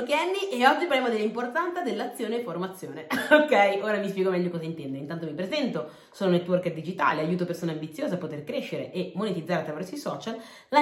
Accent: native